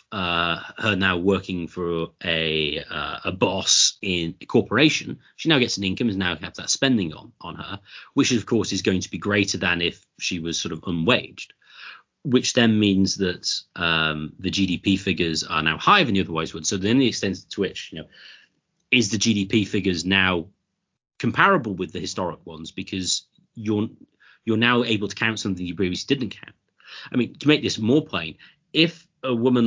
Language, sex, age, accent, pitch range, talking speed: English, male, 30-49, British, 90-120 Hz, 190 wpm